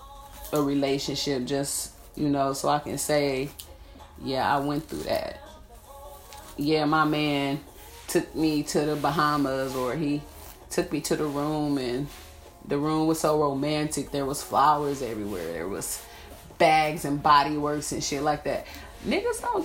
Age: 30-49